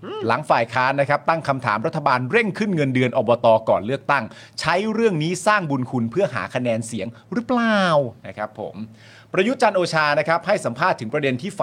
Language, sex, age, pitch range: Thai, male, 30-49, 120-185 Hz